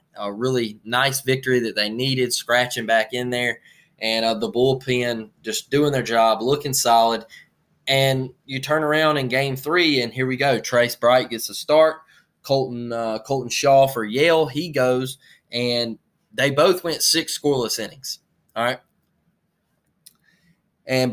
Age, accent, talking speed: 20-39, American, 155 wpm